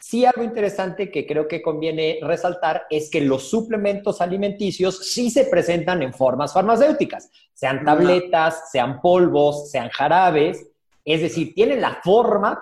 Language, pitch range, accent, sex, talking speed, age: Spanish, 155-210 Hz, Mexican, male, 145 wpm, 40-59